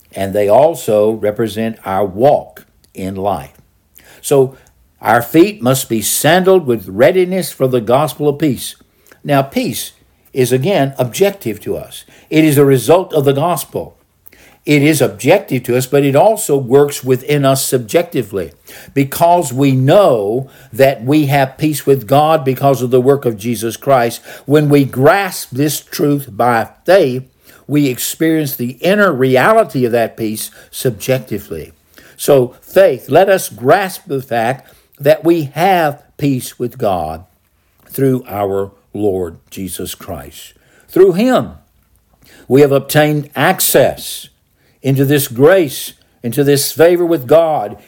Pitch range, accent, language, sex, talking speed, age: 120-150 Hz, American, English, male, 140 wpm, 60-79